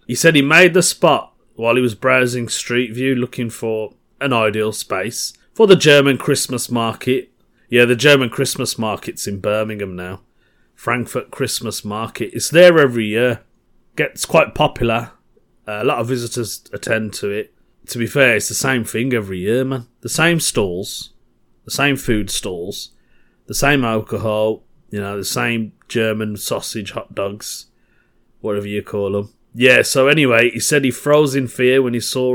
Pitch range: 110-130 Hz